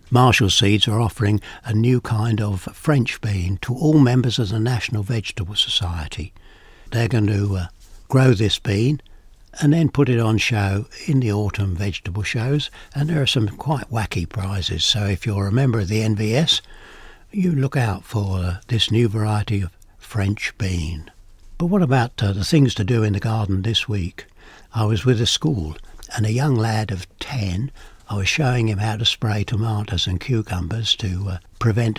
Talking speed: 185 wpm